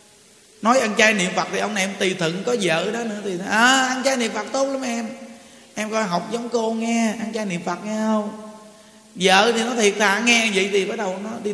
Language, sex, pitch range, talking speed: Vietnamese, male, 180-225 Hz, 250 wpm